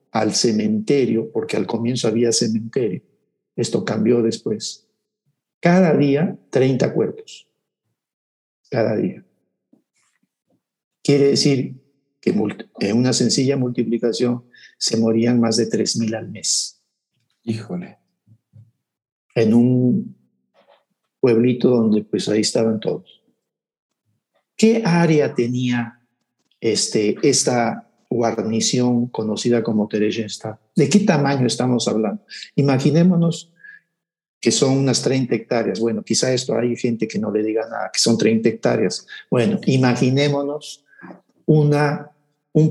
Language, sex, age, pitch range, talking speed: Spanish, male, 50-69, 115-150 Hz, 110 wpm